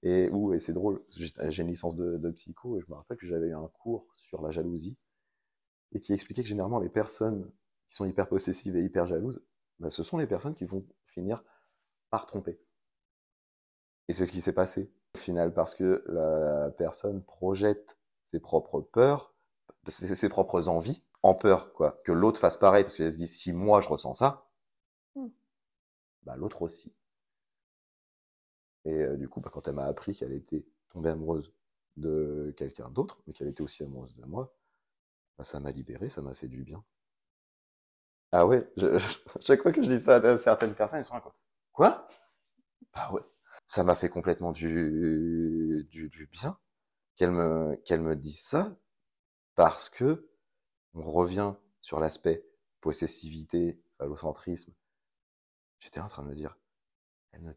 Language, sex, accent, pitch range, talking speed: French, male, French, 75-100 Hz, 175 wpm